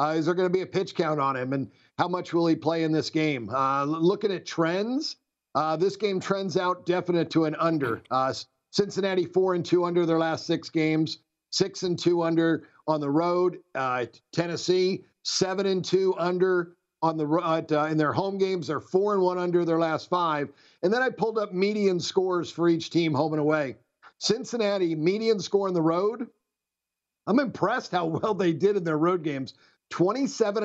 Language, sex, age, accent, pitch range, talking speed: English, male, 50-69, American, 160-195 Hz, 185 wpm